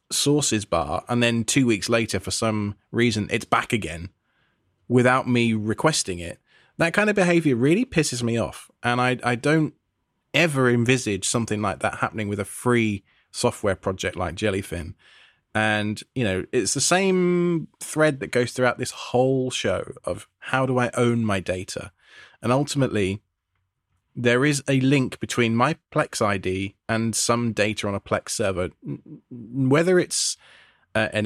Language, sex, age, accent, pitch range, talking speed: English, male, 20-39, British, 105-130 Hz, 155 wpm